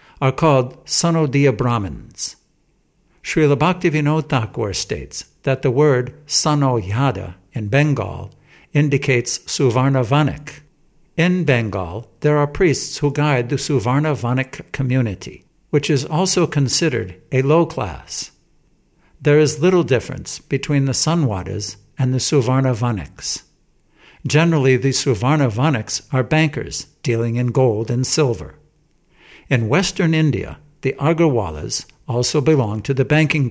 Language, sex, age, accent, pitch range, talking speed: English, male, 60-79, American, 115-150 Hz, 115 wpm